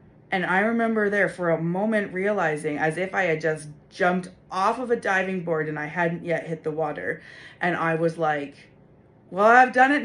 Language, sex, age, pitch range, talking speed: English, female, 30-49, 155-225 Hz, 205 wpm